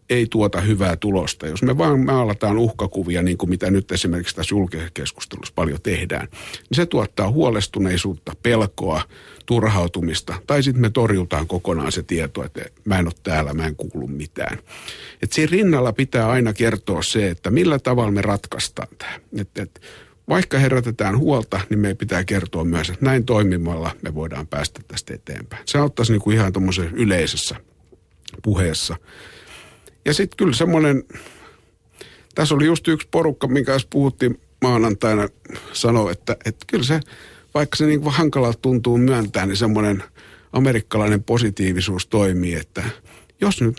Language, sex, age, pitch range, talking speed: Finnish, male, 50-69, 90-125 Hz, 155 wpm